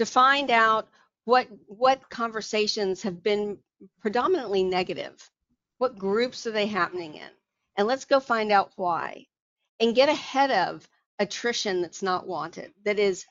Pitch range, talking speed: 195-235 Hz, 145 wpm